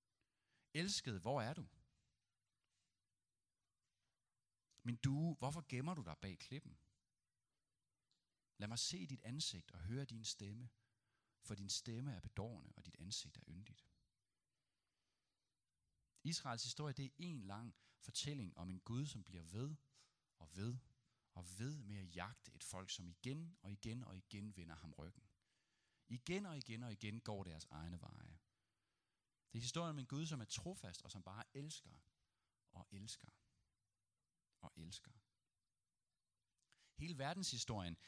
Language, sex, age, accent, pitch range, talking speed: Danish, male, 40-59, native, 100-150 Hz, 140 wpm